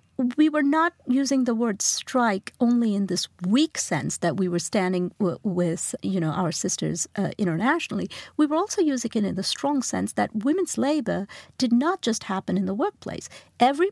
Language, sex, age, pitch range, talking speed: English, female, 50-69, 195-265 Hz, 185 wpm